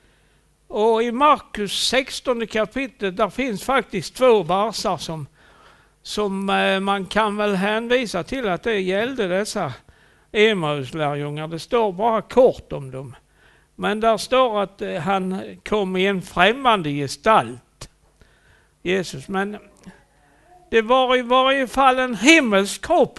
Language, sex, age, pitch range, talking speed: Swedish, male, 60-79, 185-255 Hz, 120 wpm